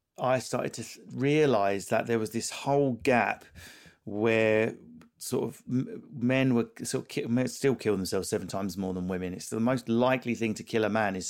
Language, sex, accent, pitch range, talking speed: English, male, British, 105-135 Hz, 195 wpm